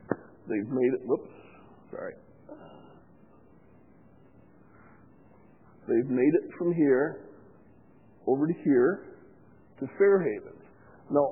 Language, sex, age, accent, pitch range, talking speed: English, male, 50-69, American, 110-185 Hz, 85 wpm